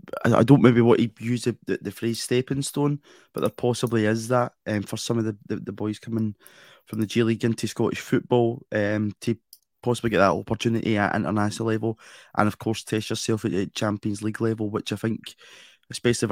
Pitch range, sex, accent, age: 105-120 Hz, male, British, 20-39